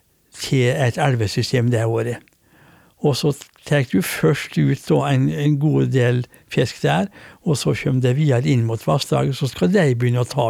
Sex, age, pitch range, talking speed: male, 60-79, 125-155 Hz, 185 wpm